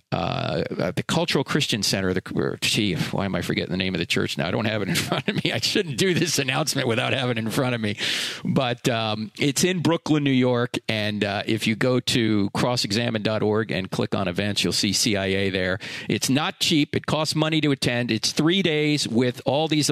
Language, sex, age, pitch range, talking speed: English, male, 50-69, 115-145 Hz, 225 wpm